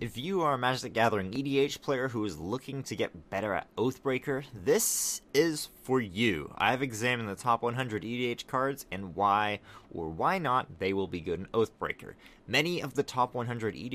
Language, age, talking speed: English, 30-49, 190 wpm